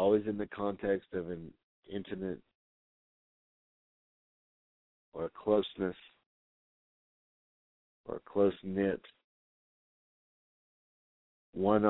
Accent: American